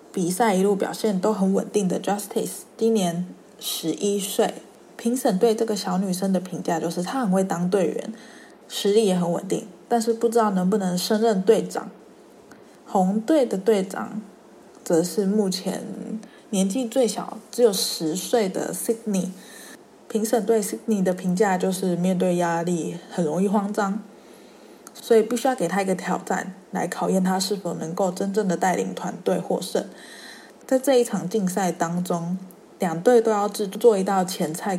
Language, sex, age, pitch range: Chinese, female, 20-39, 180-220 Hz